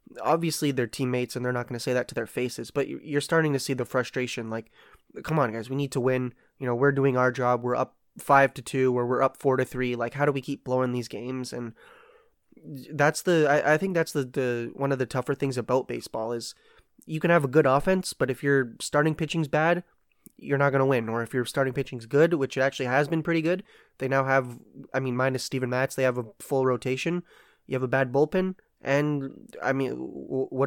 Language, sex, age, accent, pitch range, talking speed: English, male, 20-39, American, 130-150 Hz, 240 wpm